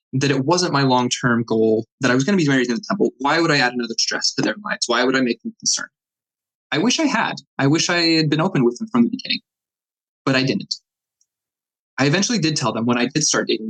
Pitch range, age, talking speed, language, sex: 125-155 Hz, 20-39, 260 wpm, English, male